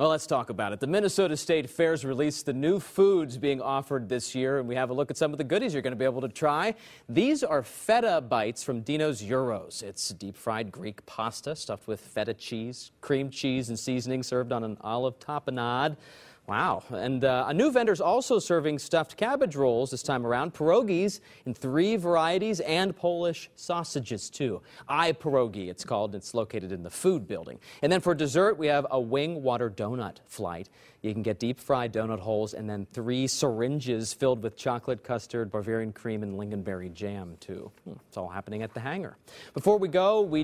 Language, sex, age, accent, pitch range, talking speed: English, male, 30-49, American, 115-155 Hz, 195 wpm